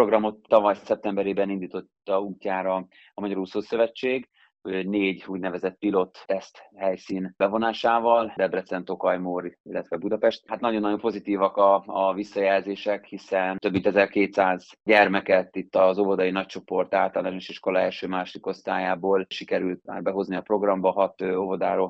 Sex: male